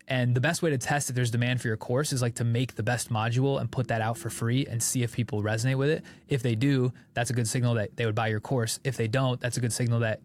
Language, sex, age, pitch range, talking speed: English, male, 20-39, 115-140 Hz, 310 wpm